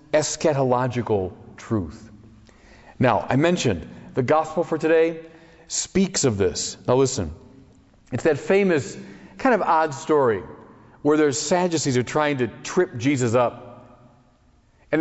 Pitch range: 115-160 Hz